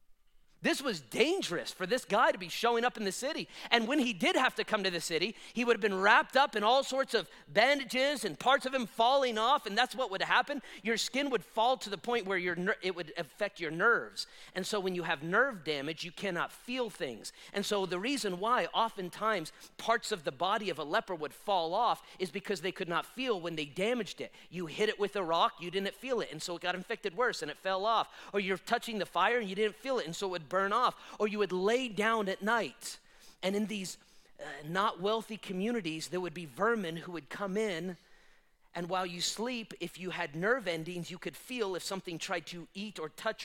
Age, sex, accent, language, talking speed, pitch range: 40-59, male, American, English, 240 wpm, 175-230 Hz